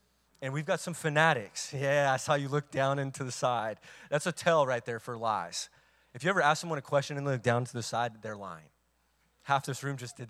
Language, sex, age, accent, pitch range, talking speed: English, male, 30-49, American, 115-150 Hz, 240 wpm